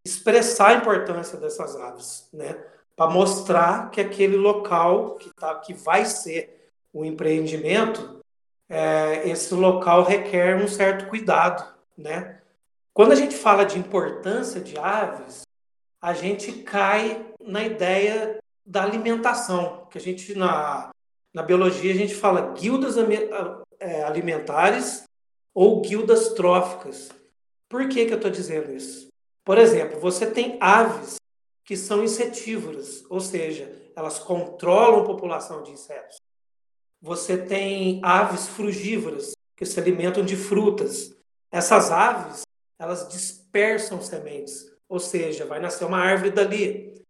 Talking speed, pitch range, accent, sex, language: 125 wpm, 180-215 Hz, Brazilian, male, Portuguese